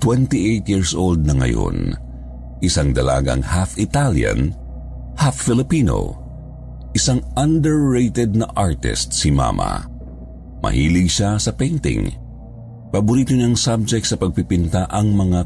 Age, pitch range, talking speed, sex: 50-69, 65-110 Hz, 110 wpm, male